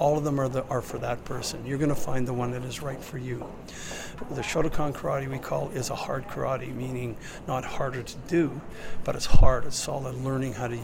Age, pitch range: 50-69, 125-140 Hz